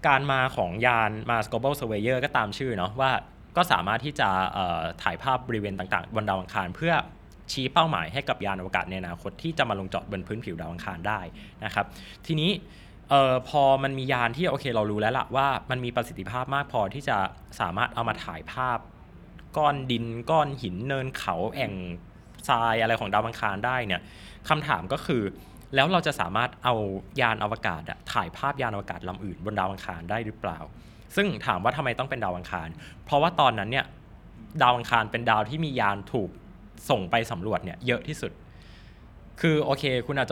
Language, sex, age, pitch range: Thai, male, 20-39, 95-130 Hz